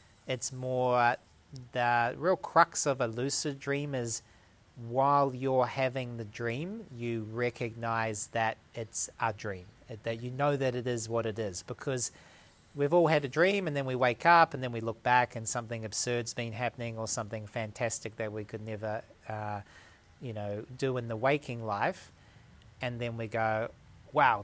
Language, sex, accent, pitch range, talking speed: Portuguese, male, Australian, 115-130 Hz, 175 wpm